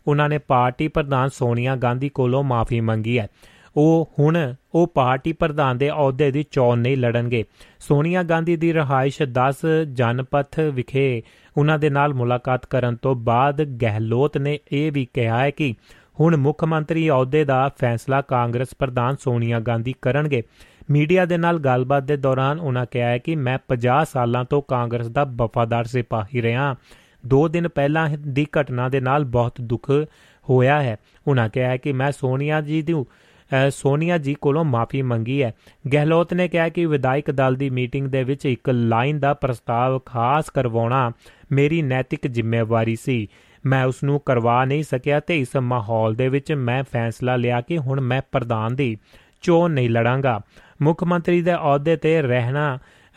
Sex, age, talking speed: male, 30-49, 145 wpm